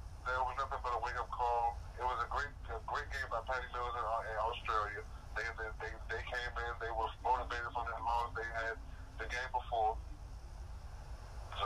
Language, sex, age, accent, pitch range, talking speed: English, male, 20-39, American, 95-120 Hz, 205 wpm